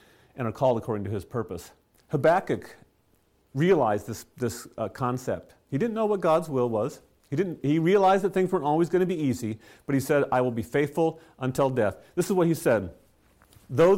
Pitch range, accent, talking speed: 110-185 Hz, American, 200 wpm